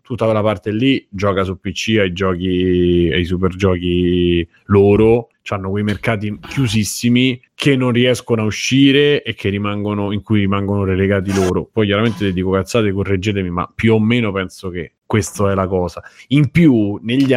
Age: 30-49